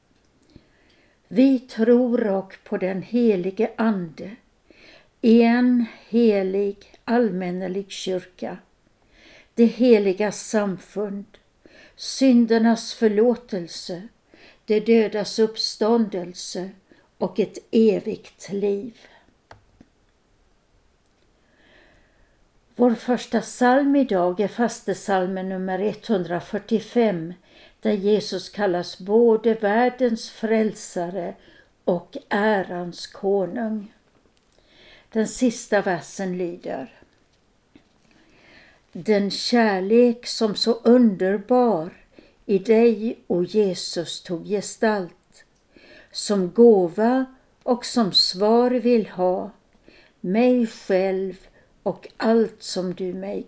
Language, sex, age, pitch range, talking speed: Swedish, female, 60-79, 190-230 Hz, 80 wpm